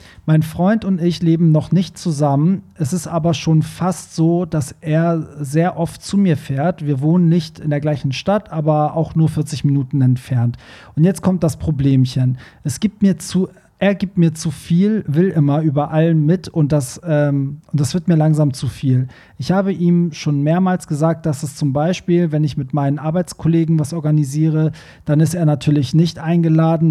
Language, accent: German, German